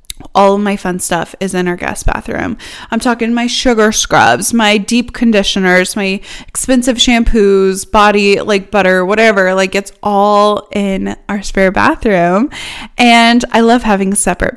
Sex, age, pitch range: female, 10-29, 195-230 Hz